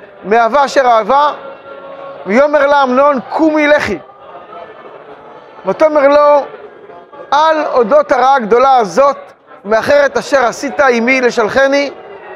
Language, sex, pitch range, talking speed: Hebrew, male, 230-275 Hz, 95 wpm